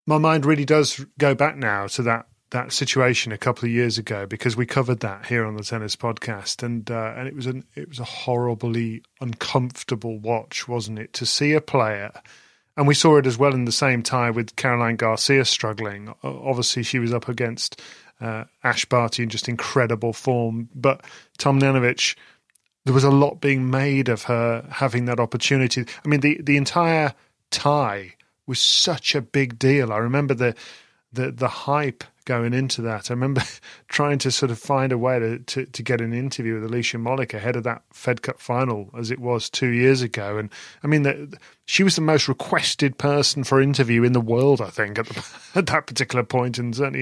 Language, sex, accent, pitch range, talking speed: English, male, British, 115-135 Hz, 200 wpm